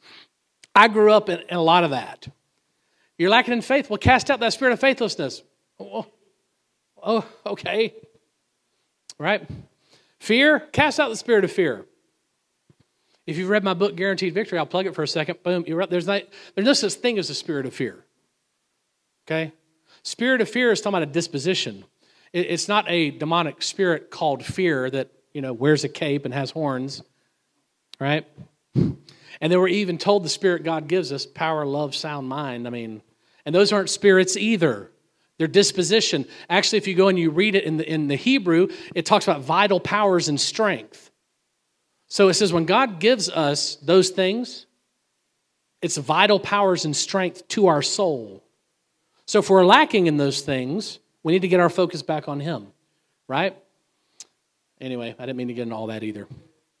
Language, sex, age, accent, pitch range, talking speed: English, male, 50-69, American, 150-205 Hz, 180 wpm